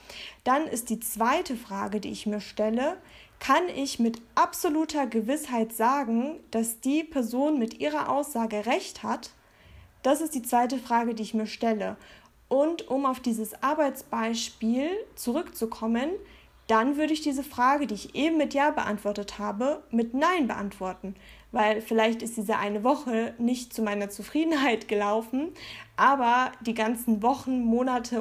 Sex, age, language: female, 20-39, German